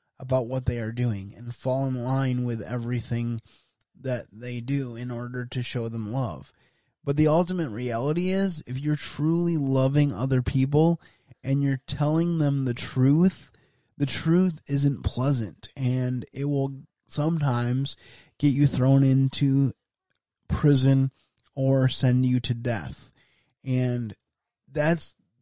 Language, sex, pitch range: English, male, 125-150 Hz